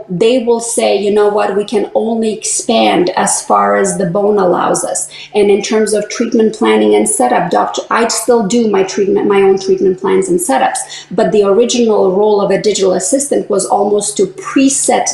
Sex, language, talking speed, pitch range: female, English, 195 wpm, 190-265 Hz